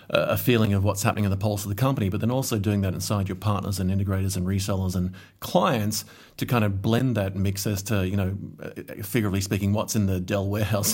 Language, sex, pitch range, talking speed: English, male, 95-115 Hz, 230 wpm